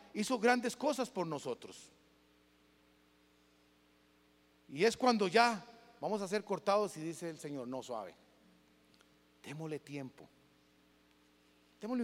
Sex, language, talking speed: male, Spanish, 110 wpm